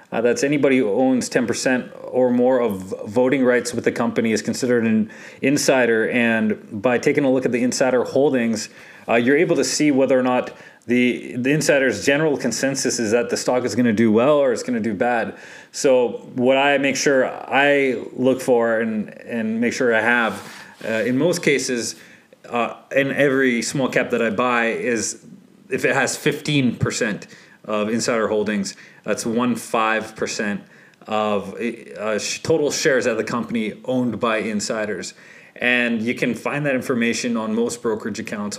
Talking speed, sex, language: 175 wpm, male, English